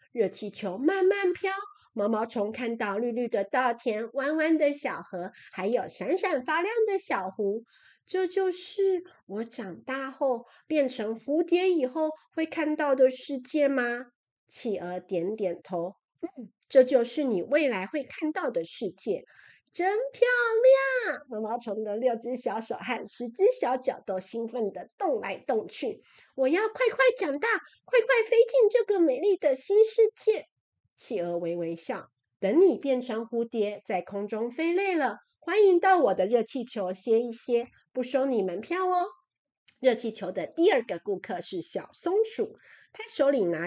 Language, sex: Chinese, female